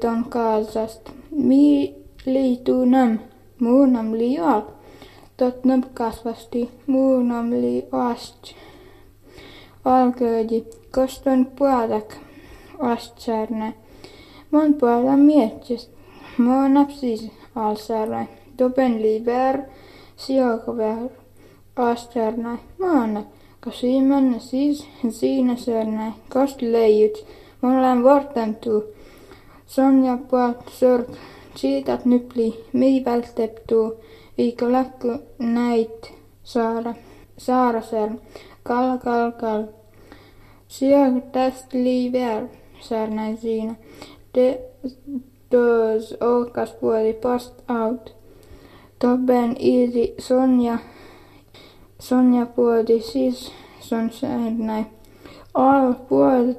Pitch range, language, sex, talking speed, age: 225-260 Hz, Finnish, female, 70 wpm, 20-39